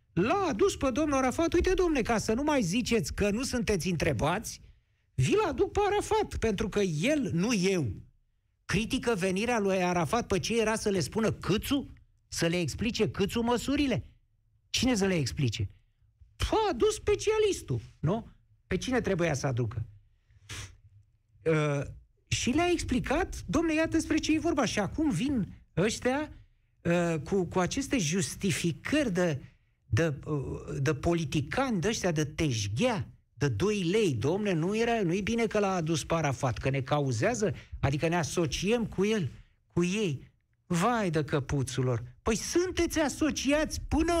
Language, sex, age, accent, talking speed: Romanian, male, 50-69, native, 150 wpm